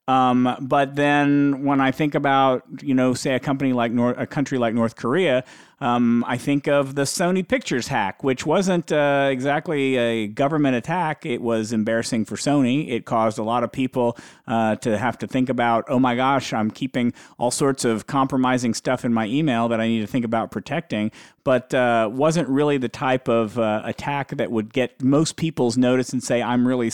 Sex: male